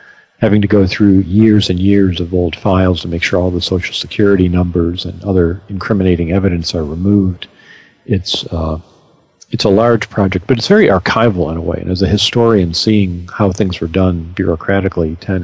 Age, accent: 50-69, American